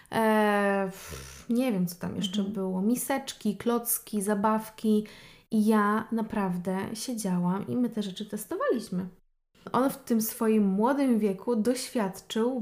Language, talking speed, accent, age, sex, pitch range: Polish, 120 wpm, native, 20-39, female, 205-230 Hz